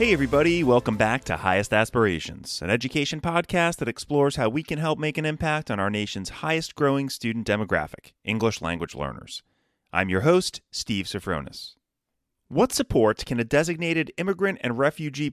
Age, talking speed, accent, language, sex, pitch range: 30-49, 160 wpm, American, English, male, 105-155 Hz